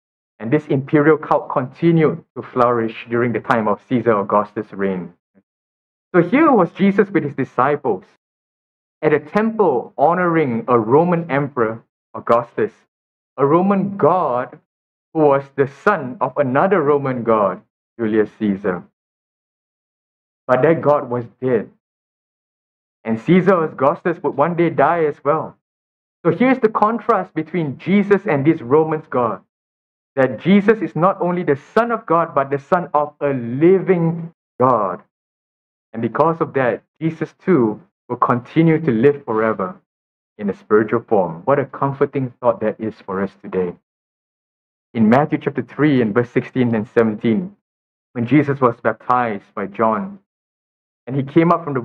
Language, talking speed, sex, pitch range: English, 150 wpm, male, 120-160 Hz